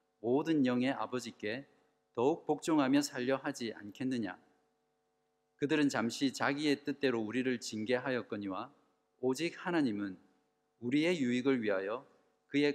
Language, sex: Korean, male